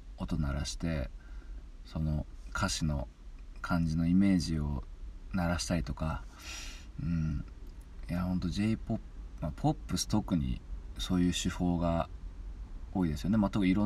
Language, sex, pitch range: Japanese, male, 70-90 Hz